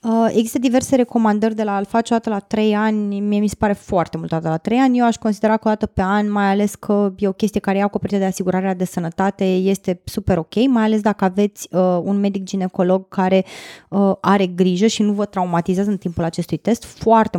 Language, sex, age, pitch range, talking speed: Romanian, female, 20-39, 185-220 Hz, 215 wpm